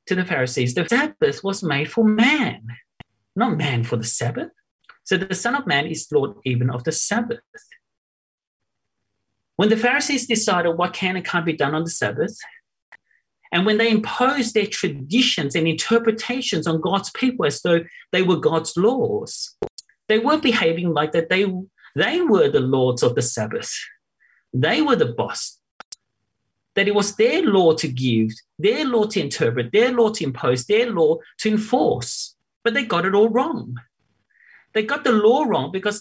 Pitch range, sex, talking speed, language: 160-245 Hz, male, 170 wpm, English